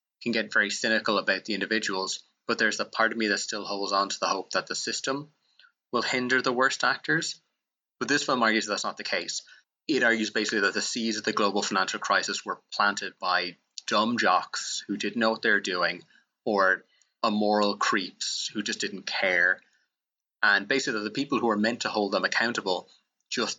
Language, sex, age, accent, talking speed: English, male, 20-39, Irish, 195 wpm